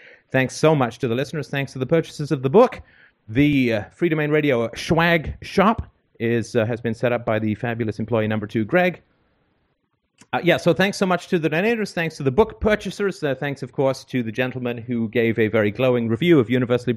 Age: 40-59